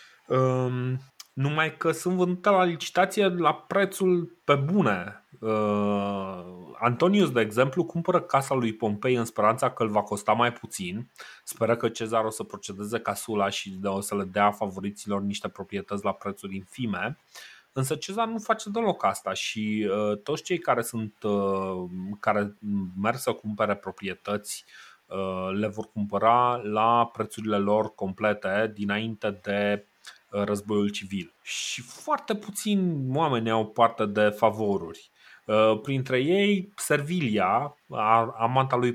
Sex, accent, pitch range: male, native, 105-130 Hz